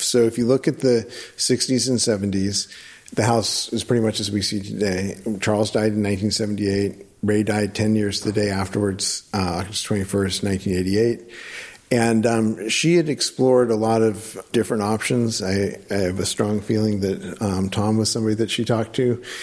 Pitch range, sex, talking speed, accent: 100-115 Hz, male, 180 wpm, American